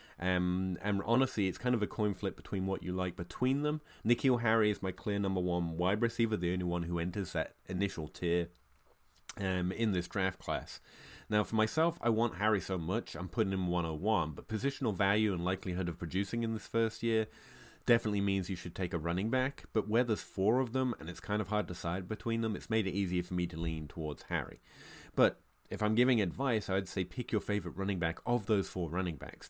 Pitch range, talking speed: 85-110 Hz, 225 wpm